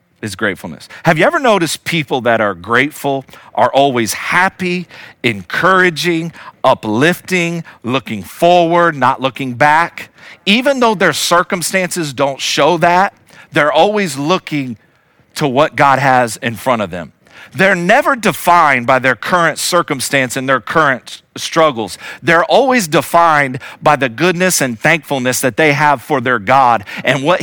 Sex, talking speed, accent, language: male, 140 wpm, American, English